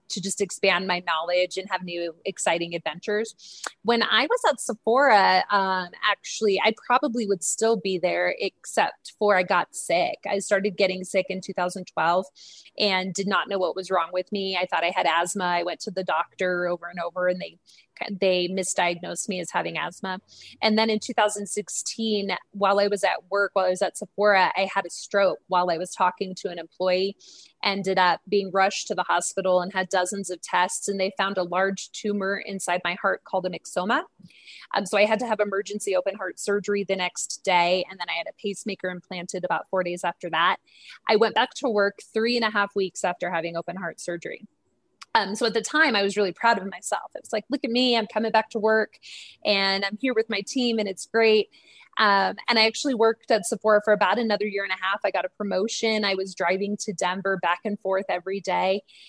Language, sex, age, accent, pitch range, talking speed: English, female, 20-39, American, 185-215 Hz, 215 wpm